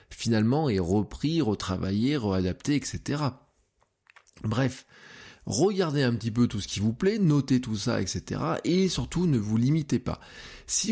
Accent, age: French, 20-39